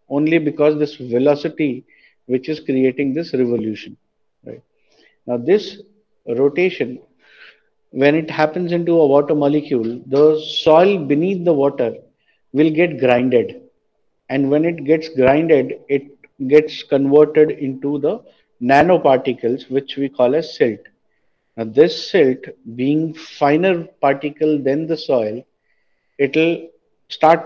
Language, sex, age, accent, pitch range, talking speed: Hindi, male, 50-69, native, 135-160 Hz, 125 wpm